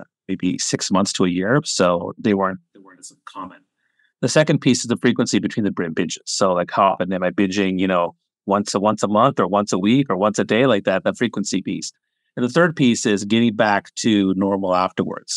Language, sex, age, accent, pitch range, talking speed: English, male, 30-49, American, 95-120 Hz, 230 wpm